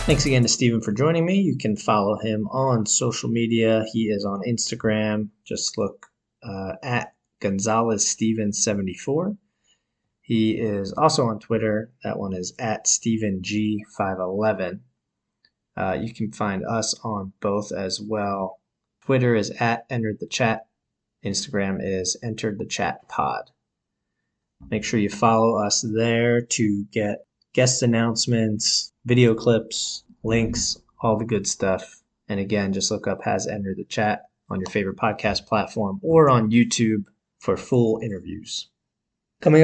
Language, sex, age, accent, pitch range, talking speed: English, male, 20-39, American, 100-120 Hz, 135 wpm